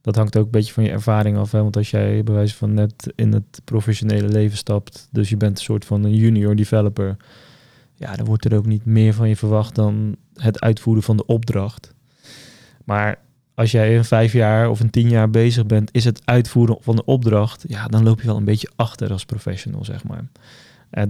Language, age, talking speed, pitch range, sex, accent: Dutch, 20-39, 220 wpm, 105-125 Hz, male, Dutch